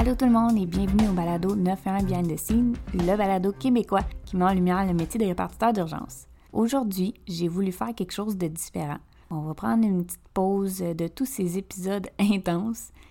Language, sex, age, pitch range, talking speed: French, female, 20-39, 170-205 Hz, 200 wpm